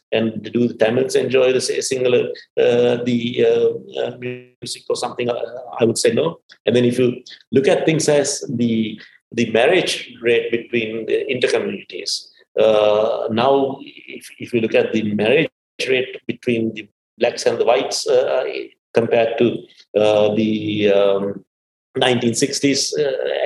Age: 50-69